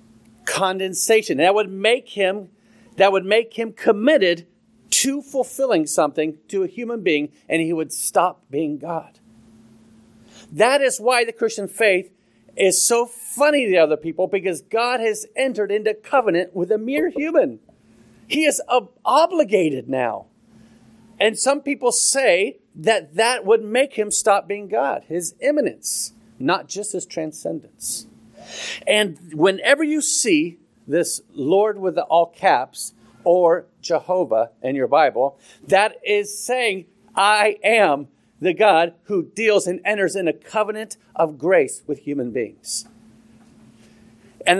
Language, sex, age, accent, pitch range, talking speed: English, male, 40-59, American, 175-240 Hz, 135 wpm